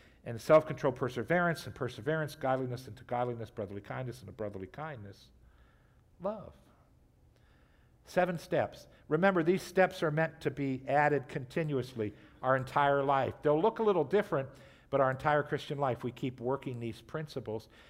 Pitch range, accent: 125-160 Hz, American